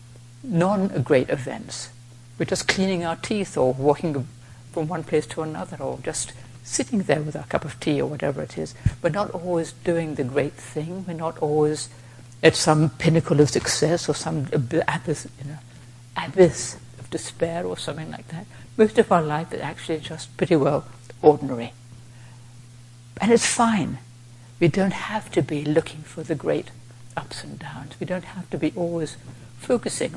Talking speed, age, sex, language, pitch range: 165 wpm, 60-79, female, English, 120-165 Hz